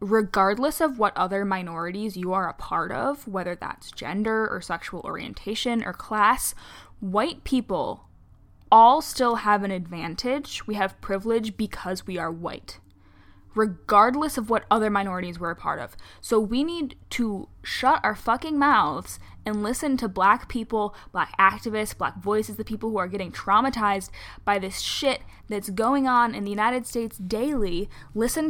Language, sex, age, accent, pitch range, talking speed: English, female, 10-29, American, 195-245 Hz, 160 wpm